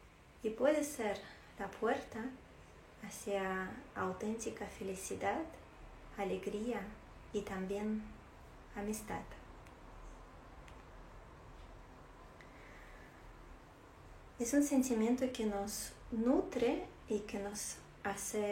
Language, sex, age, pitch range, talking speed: Spanish, female, 20-39, 195-235 Hz, 70 wpm